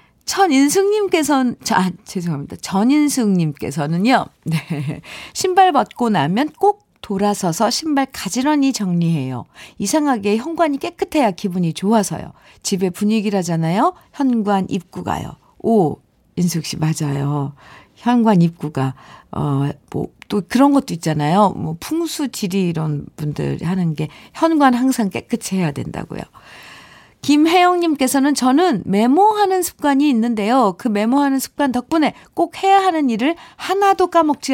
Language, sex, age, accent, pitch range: Korean, female, 50-69, native, 170-270 Hz